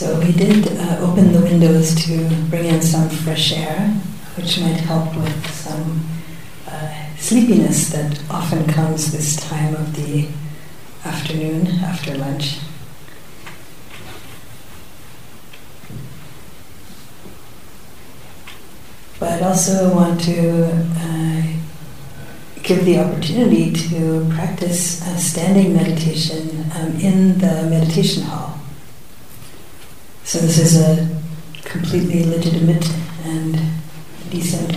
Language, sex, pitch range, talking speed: English, female, 155-170 Hz, 95 wpm